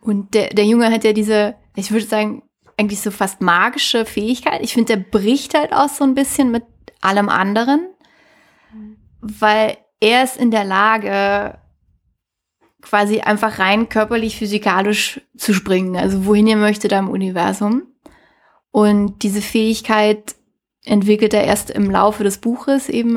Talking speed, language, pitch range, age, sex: 150 wpm, German, 205-235 Hz, 20-39, female